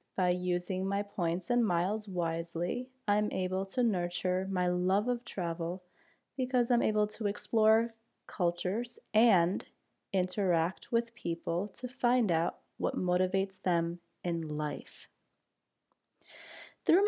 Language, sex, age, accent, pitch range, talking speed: English, female, 30-49, American, 170-210 Hz, 120 wpm